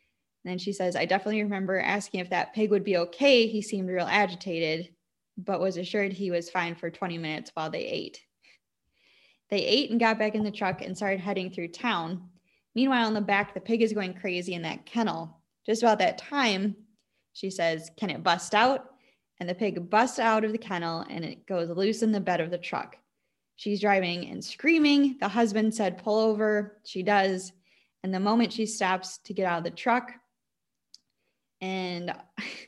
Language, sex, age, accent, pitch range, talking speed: English, female, 10-29, American, 180-220 Hz, 195 wpm